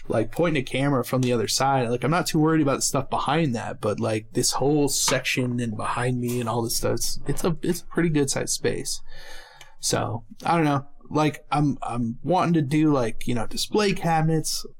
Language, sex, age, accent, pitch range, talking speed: English, male, 20-39, American, 125-155 Hz, 215 wpm